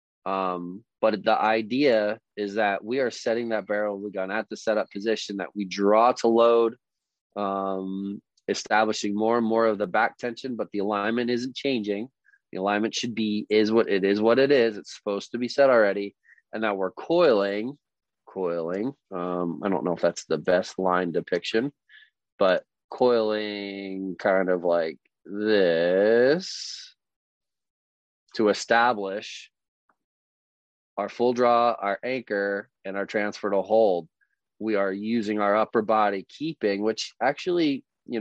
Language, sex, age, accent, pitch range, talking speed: English, male, 20-39, American, 95-115 Hz, 150 wpm